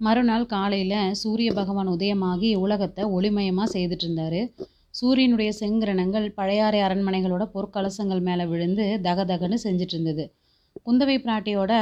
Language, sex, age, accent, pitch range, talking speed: Tamil, female, 30-49, native, 190-225 Hz, 100 wpm